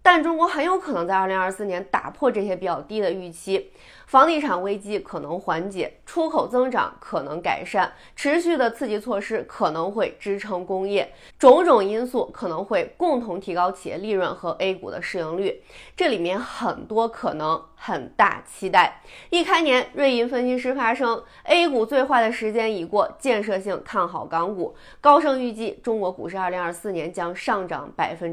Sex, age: female, 30-49